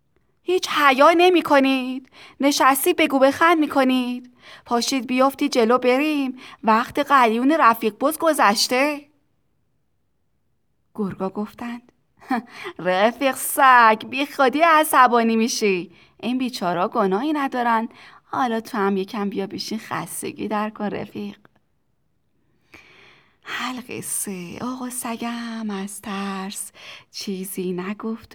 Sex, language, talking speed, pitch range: female, Persian, 100 wpm, 195-265 Hz